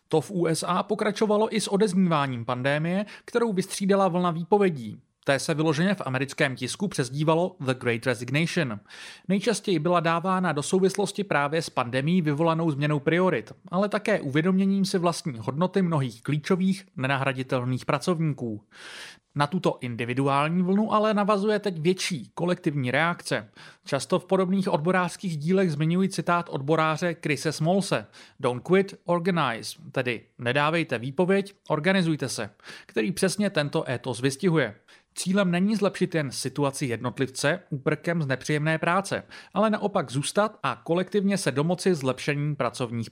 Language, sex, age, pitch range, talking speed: Czech, male, 30-49, 140-190 Hz, 130 wpm